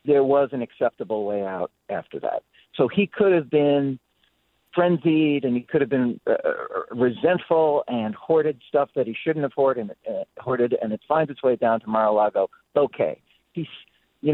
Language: English